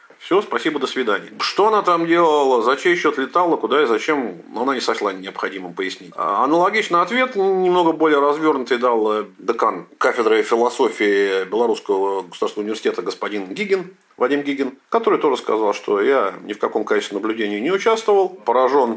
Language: Russian